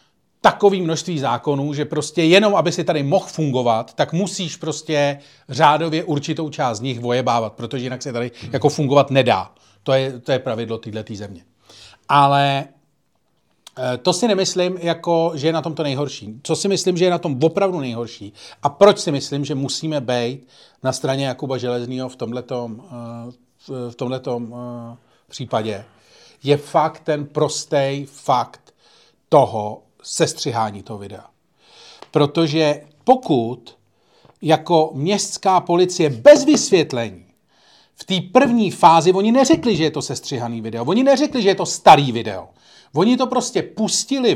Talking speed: 145 wpm